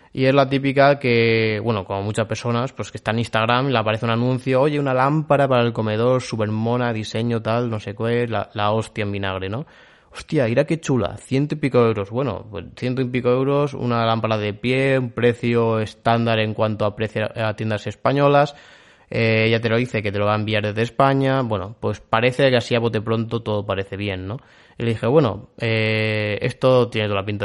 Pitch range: 110-125 Hz